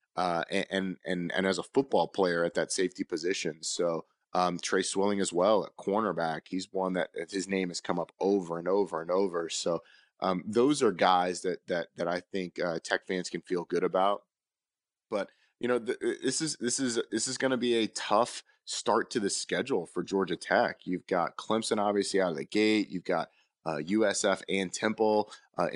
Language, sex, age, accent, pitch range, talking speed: English, male, 30-49, American, 90-105 Hz, 205 wpm